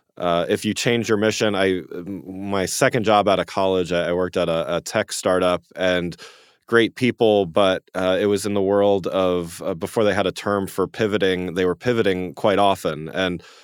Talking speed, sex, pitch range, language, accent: 200 wpm, male, 85-100 Hz, English, American